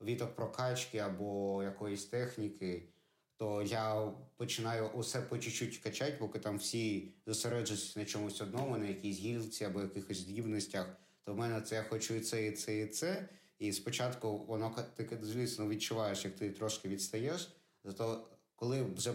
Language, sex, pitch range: Ukrainian, male, 100-115 Hz